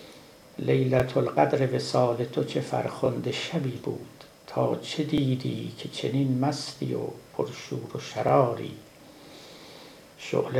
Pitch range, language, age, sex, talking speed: 125-135 Hz, Persian, 60-79, male, 110 wpm